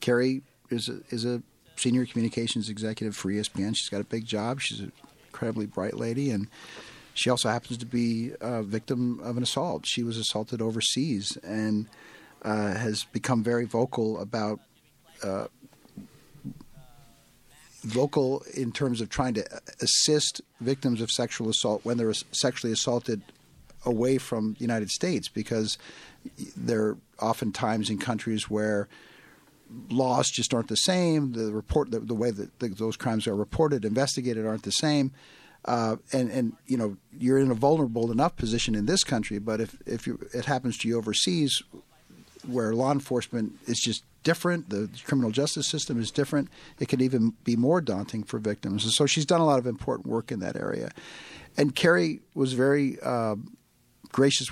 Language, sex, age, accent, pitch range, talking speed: English, male, 50-69, American, 110-130 Hz, 160 wpm